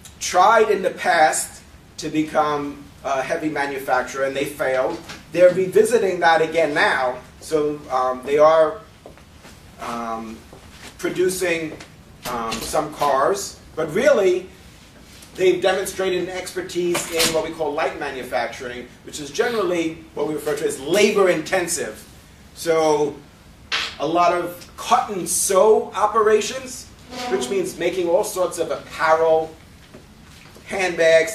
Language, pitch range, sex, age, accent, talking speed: English, 145-180 Hz, male, 40-59, American, 125 wpm